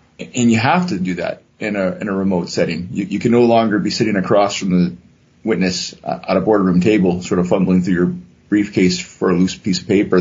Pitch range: 90-105 Hz